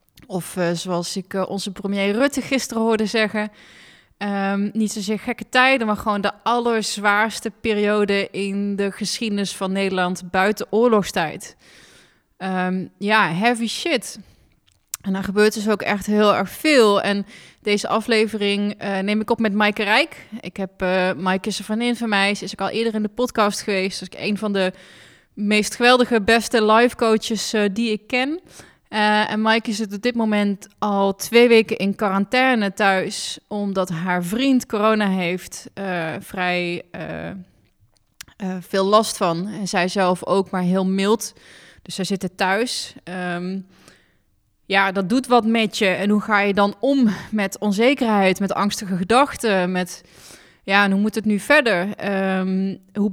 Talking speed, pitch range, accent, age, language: 170 wpm, 190-220 Hz, Dutch, 20-39, Dutch